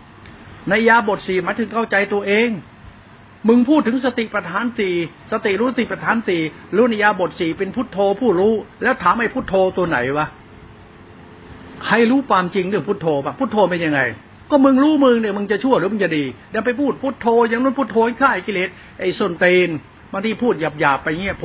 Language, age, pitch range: Thai, 60-79, 160-215 Hz